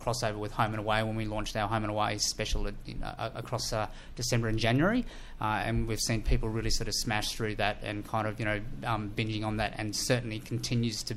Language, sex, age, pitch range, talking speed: English, male, 30-49, 110-120 Hz, 235 wpm